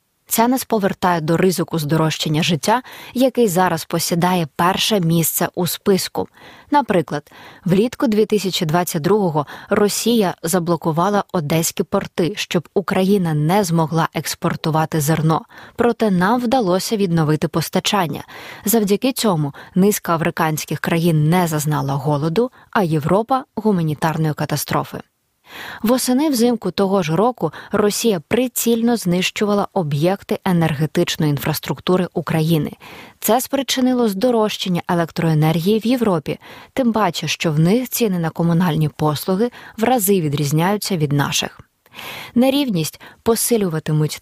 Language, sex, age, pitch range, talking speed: Ukrainian, female, 20-39, 165-220 Hz, 105 wpm